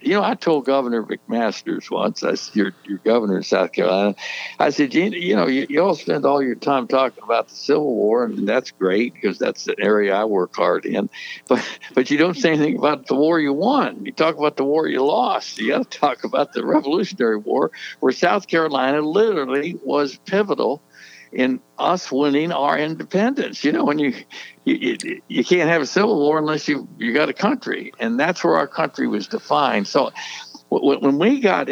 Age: 60-79